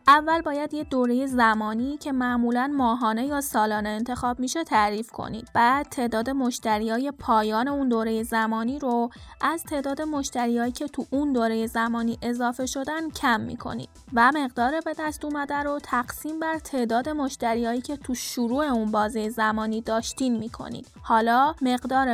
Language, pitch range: Persian, 235-285 Hz